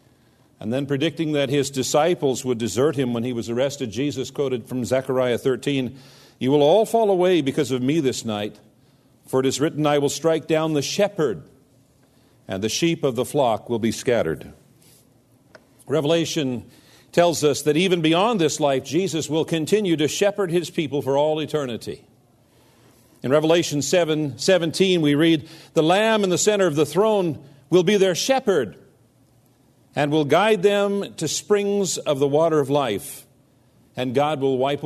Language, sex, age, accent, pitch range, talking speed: English, male, 50-69, American, 125-155 Hz, 170 wpm